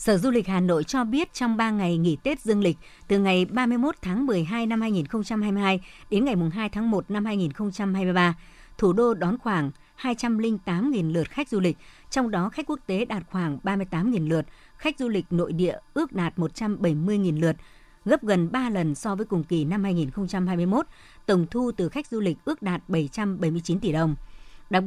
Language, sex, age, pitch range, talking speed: Vietnamese, male, 60-79, 170-220 Hz, 185 wpm